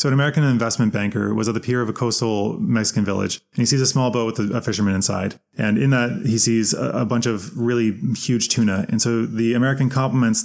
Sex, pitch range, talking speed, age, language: male, 110-130 Hz, 230 wpm, 20-39, English